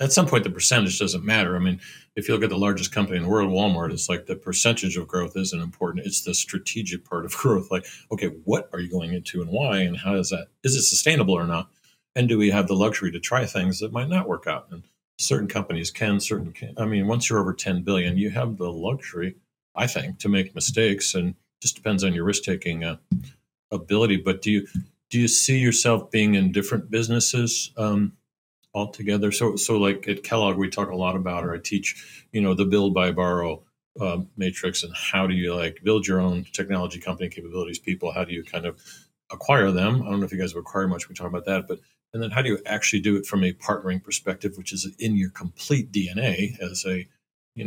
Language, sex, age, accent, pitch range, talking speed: English, male, 50-69, American, 90-110 Hz, 235 wpm